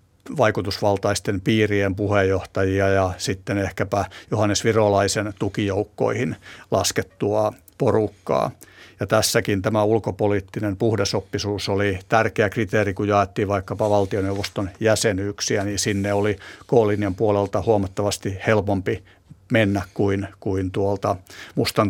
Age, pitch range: 60-79, 100-110 Hz